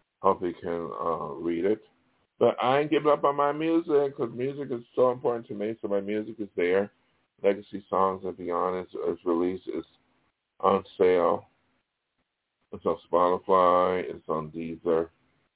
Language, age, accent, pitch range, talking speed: English, 50-69, American, 95-110 Hz, 160 wpm